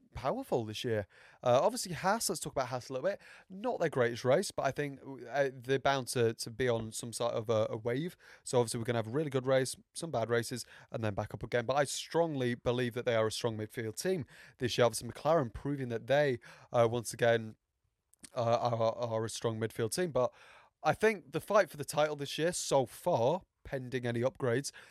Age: 30-49